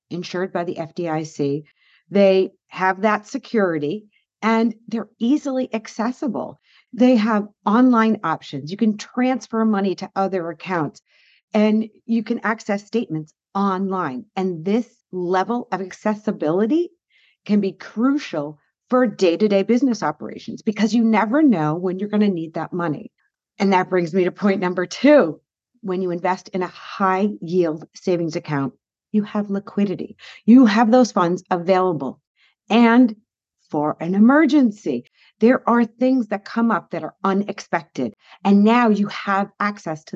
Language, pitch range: English, 175-230 Hz